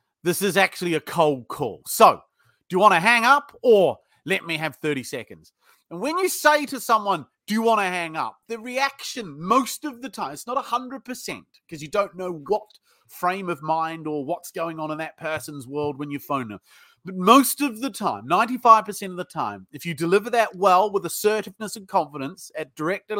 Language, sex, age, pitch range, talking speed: English, male, 30-49, 165-230 Hz, 205 wpm